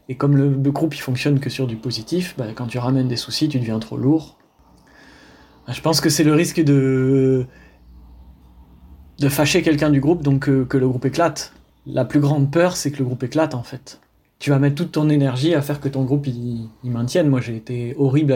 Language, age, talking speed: French, 20-39, 220 wpm